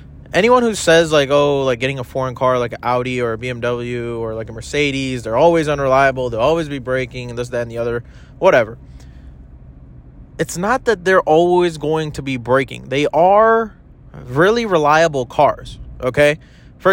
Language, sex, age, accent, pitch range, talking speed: English, male, 20-39, American, 115-155 Hz, 175 wpm